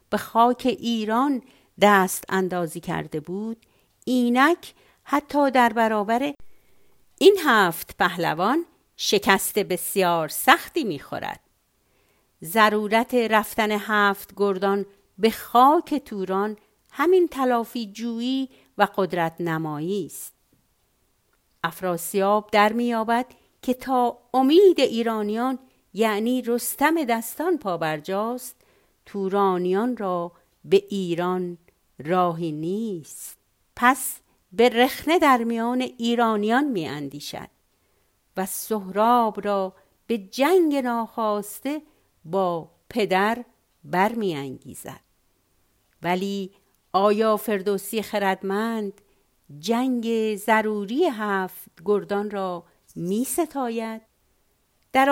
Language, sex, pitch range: Persian, female, 190-245 Hz